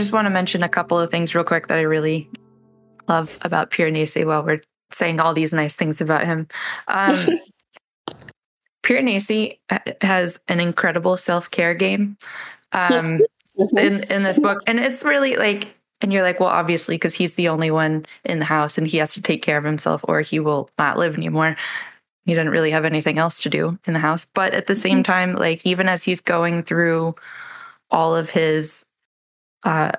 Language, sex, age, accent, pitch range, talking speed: English, female, 20-39, American, 160-185 Hz, 185 wpm